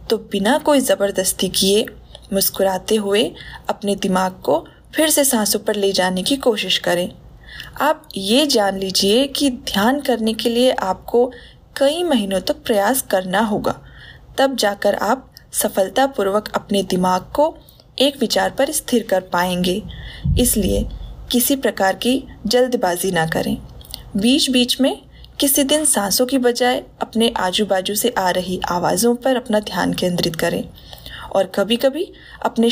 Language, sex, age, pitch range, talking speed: Hindi, female, 20-39, 195-265 Hz, 145 wpm